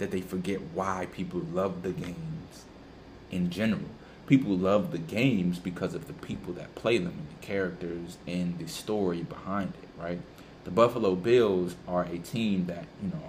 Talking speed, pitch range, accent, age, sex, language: 175 wpm, 90-100 Hz, American, 20-39, male, English